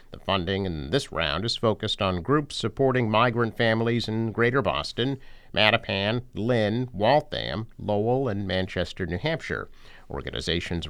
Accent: American